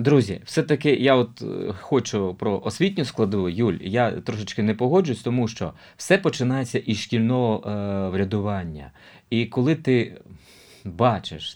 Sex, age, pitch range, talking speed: male, 30-49, 105-135 Hz, 130 wpm